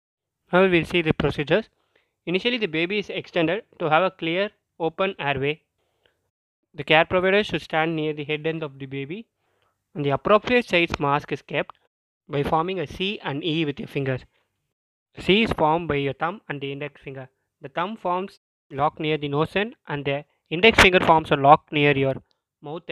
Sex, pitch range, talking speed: male, 145-180 Hz, 190 wpm